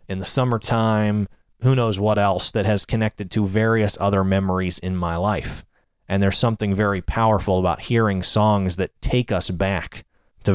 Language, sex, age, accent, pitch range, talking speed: English, male, 30-49, American, 90-110 Hz, 170 wpm